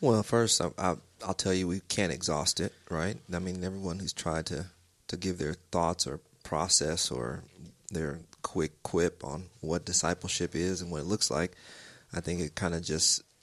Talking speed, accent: 190 wpm, American